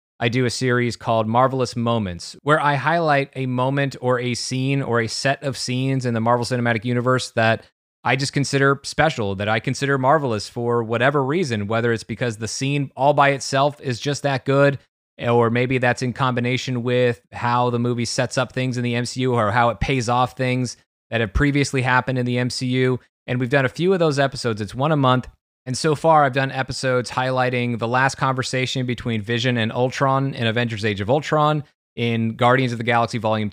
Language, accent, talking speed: English, American, 205 wpm